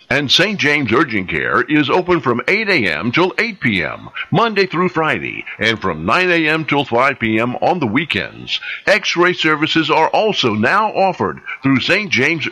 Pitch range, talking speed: 125-180 Hz, 170 wpm